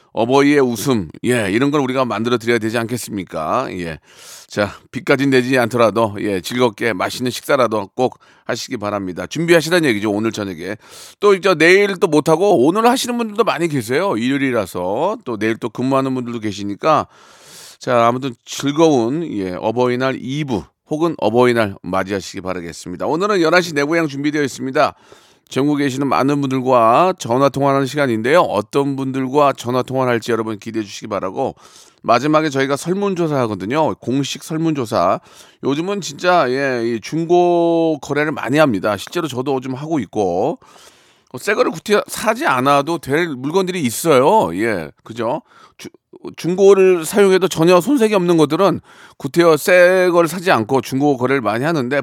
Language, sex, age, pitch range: Korean, male, 40-59, 120-165 Hz